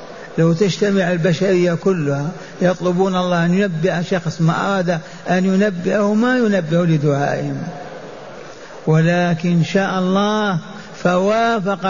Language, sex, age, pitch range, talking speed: Arabic, male, 60-79, 170-205 Hz, 110 wpm